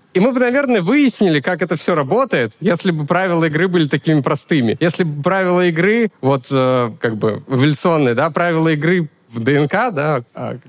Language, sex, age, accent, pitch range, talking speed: Russian, male, 20-39, native, 145-190 Hz, 180 wpm